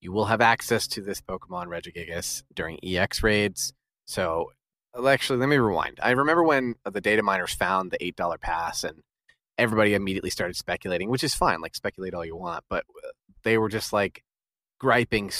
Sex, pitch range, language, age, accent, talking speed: male, 105-140 Hz, English, 30-49, American, 175 wpm